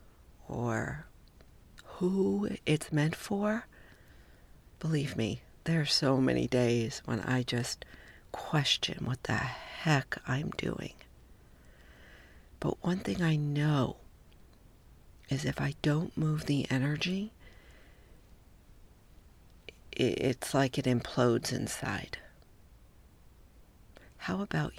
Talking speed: 95 wpm